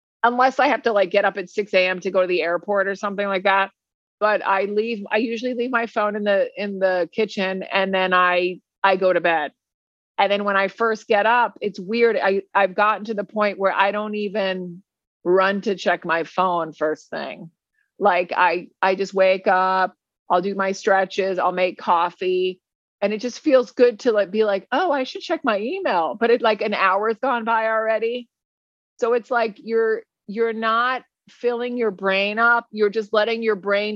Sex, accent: female, American